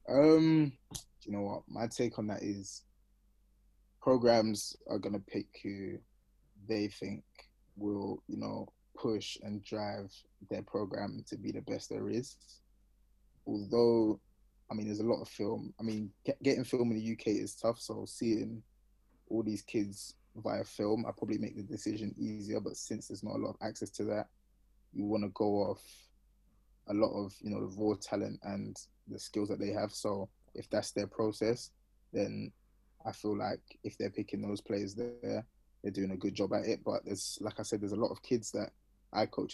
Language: English